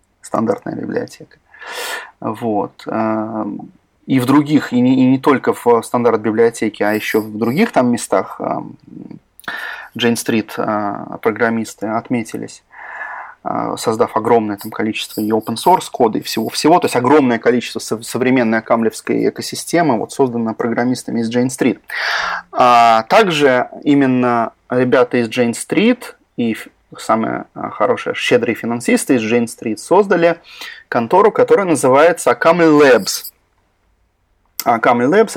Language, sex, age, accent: Russian, male, 20-39, native